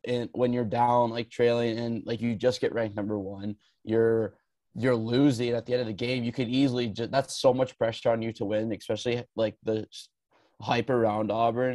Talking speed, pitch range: 210 wpm, 110-135 Hz